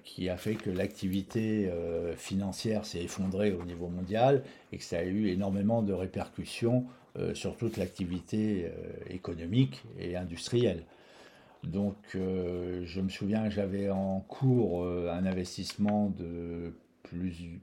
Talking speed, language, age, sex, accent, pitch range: 125 wpm, French, 50-69, male, French, 90-105 Hz